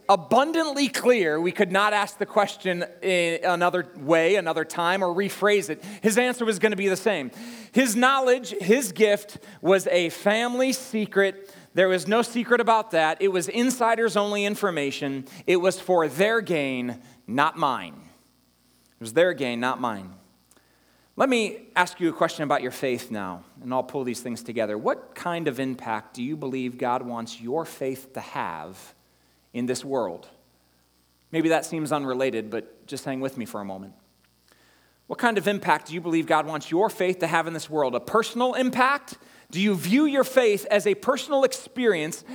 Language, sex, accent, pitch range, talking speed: English, male, American, 135-220 Hz, 180 wpm